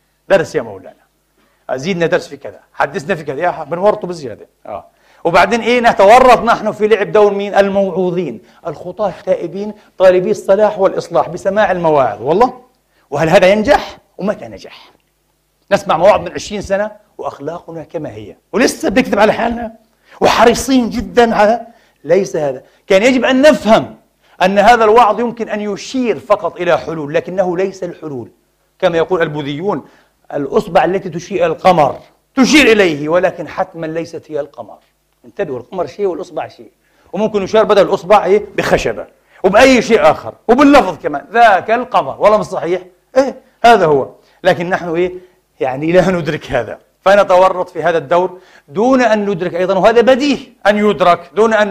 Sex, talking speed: male, 145 wpm